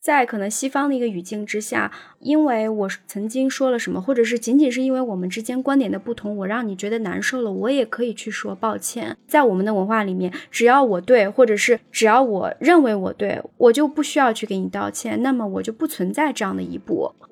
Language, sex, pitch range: Chinese, female, 205-275 Hz